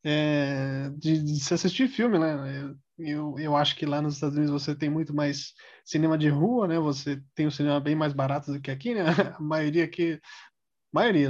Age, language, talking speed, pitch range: 20-39, Portuguese, 205 wpm, 145-170 Hz